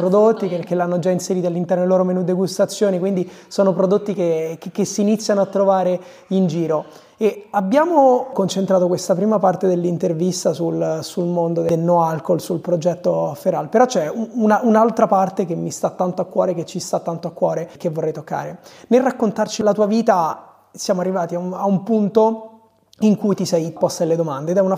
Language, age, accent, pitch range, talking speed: Italian, 20-39, native, 170-195 Hz, 195 wpm